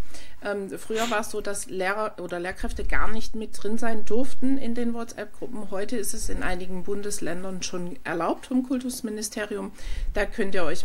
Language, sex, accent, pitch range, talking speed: German, female, German, 195-240 Hz, 175 wpm